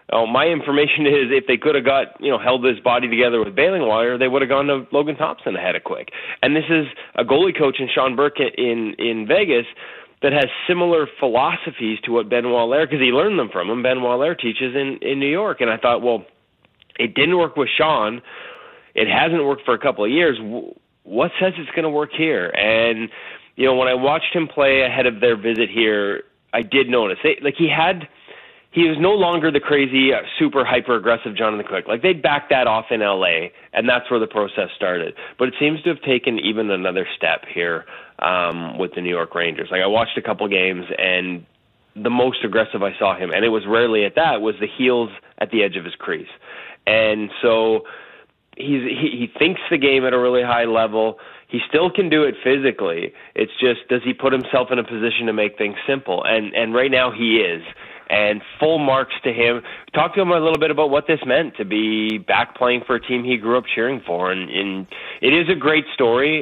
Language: English